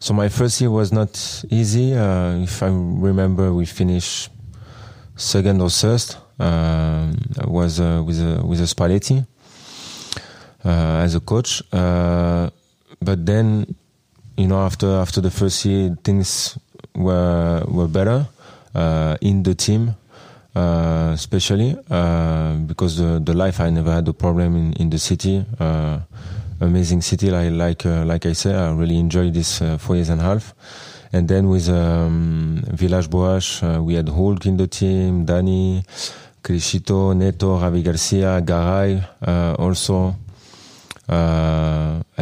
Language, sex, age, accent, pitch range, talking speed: German, male, 20-39, French, 85-100 Hz, 145 wpm